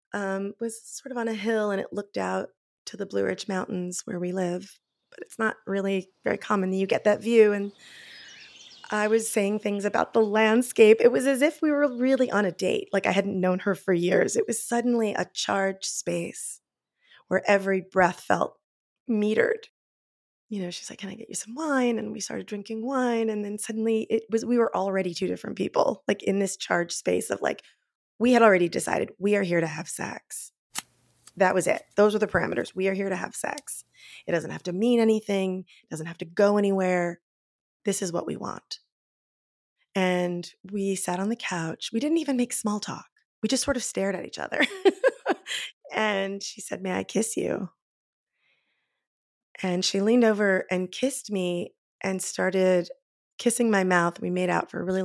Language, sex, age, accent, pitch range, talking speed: English, female, 20-39, American, 185-230 Hz, 200 wpm